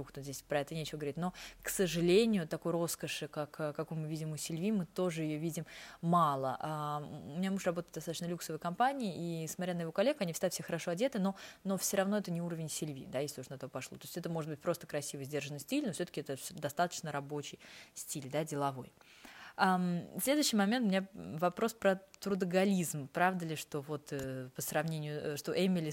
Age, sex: 20-39, female